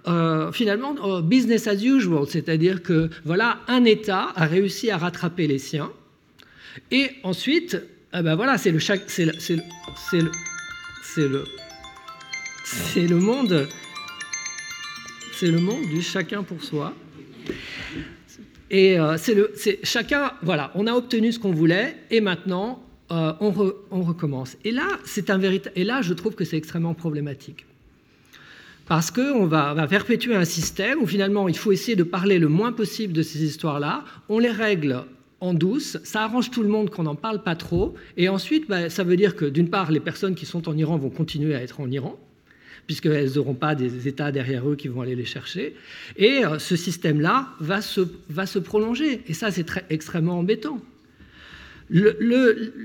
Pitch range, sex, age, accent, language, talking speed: 160-215 Hz, male, 50-69, French, French, 160 wpm